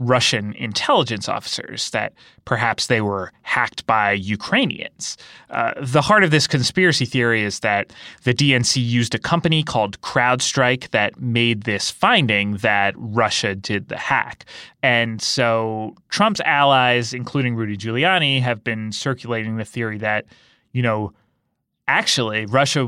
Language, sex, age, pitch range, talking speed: English, male, 30-49, 110-135 Hz, 135 wpm